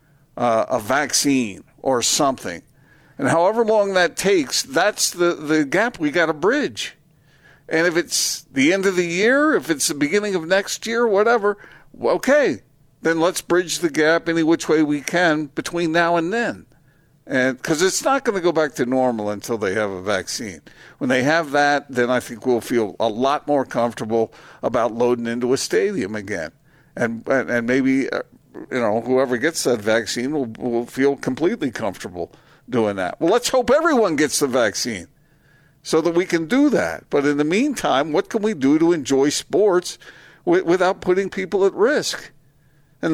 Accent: American